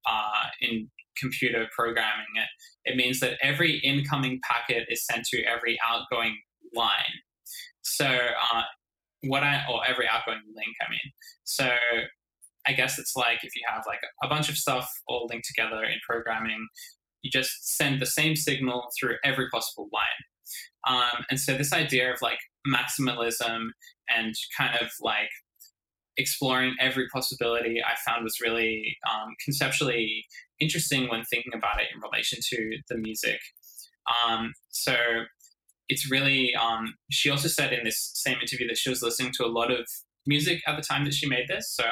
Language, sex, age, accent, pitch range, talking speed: English, male, 10-29, Australian, 115-145 Hz, 165 wpm